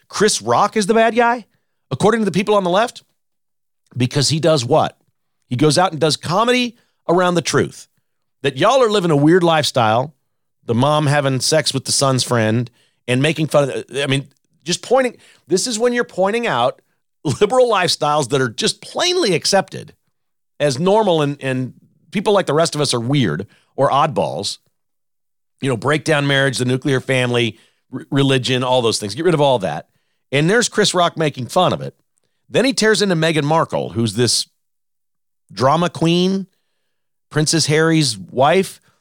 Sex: male